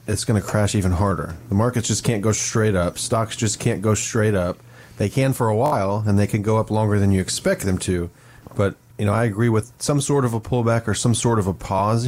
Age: 30-49